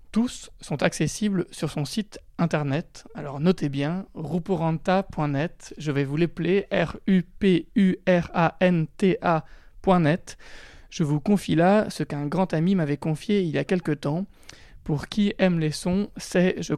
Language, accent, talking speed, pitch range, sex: French, French, 135 wpm, 155-195 Hz, male